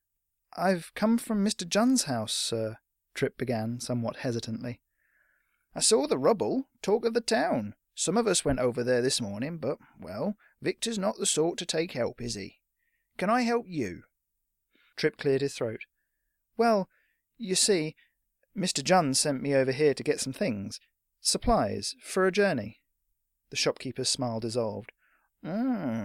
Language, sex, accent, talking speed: English, male, British, 155 wpm